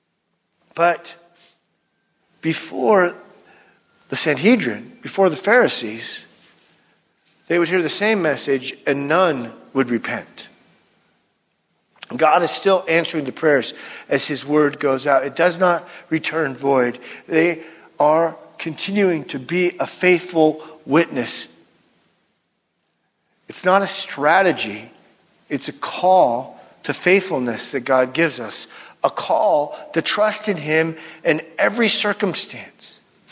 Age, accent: 50-69, American